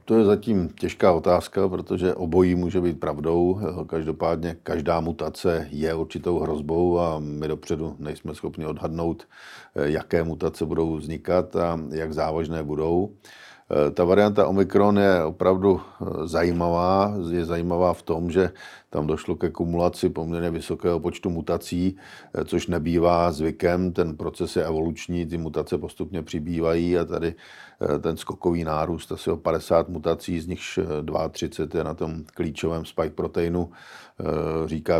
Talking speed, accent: 135 wpm, native